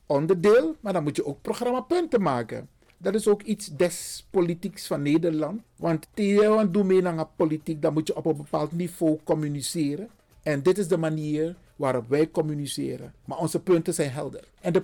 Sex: male